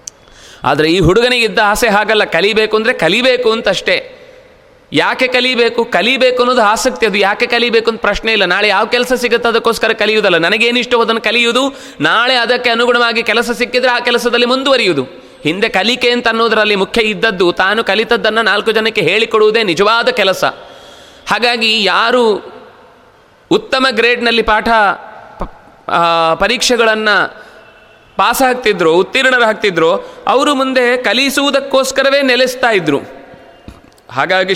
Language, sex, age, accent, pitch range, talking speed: Kannada, male, 30-49, native, 205-250 Hz, 115 wpm